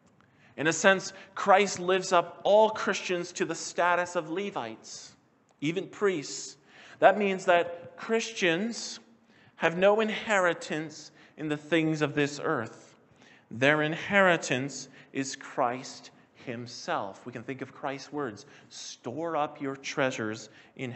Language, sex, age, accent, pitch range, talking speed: English, male, 40-59, American, 135-170 Hz, 125 wpm